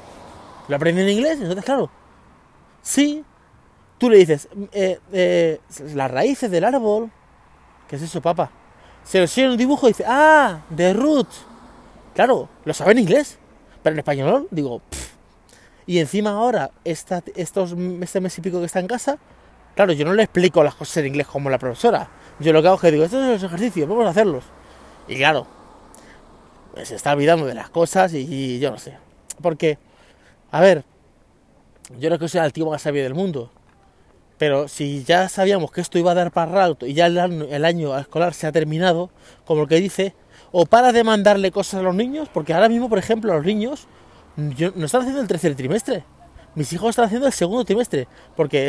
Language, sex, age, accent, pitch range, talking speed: Spanish, male, 30-49, Spanish, 145-200 Hz, 200 wpm